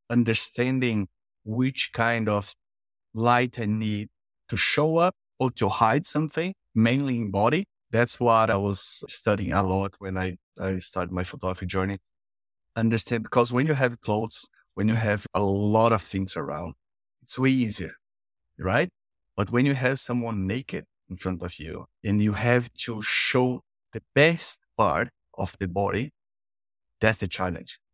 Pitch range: 100-125 Hz